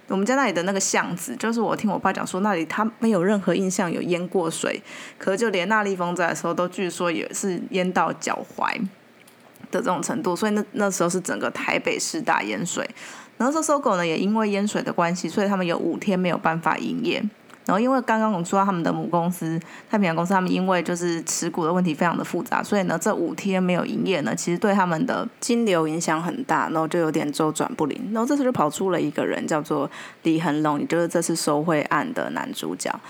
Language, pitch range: Chinese, 165-215 Hz